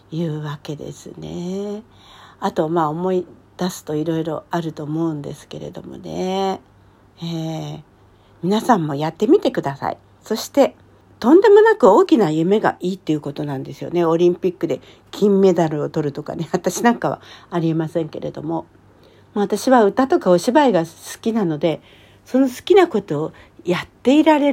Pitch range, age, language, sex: 170-270 Hz, 60-79, Japanese, female